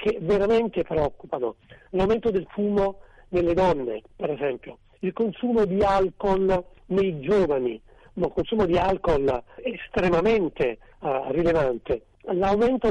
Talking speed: 115 wpm